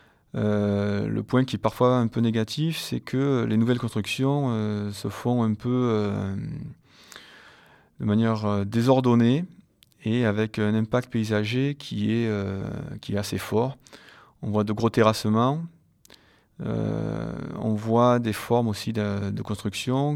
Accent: French